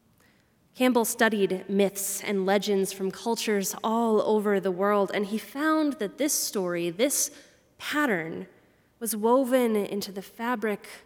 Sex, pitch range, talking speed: female, 195-225 Hz, 130 wpm